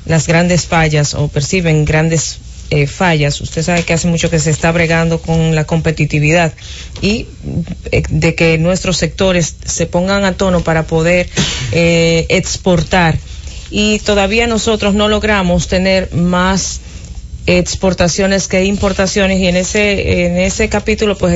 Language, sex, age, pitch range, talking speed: English, female, 40-59, 165-210 Hz, 140 wpm